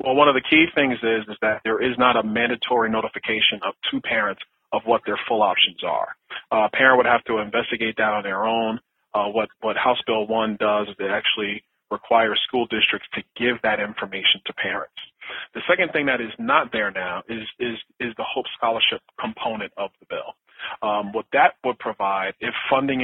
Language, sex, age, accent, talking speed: English, male, 40-59, American, 205 wpm